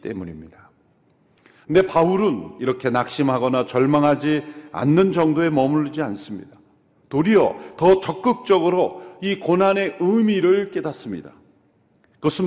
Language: Korean